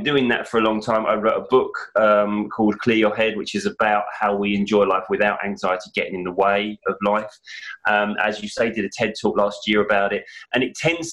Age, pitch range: 20-39, 100-120 Hz